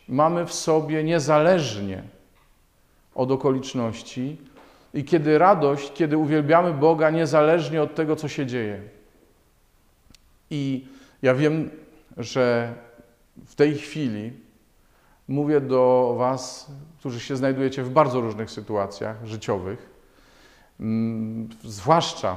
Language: Polish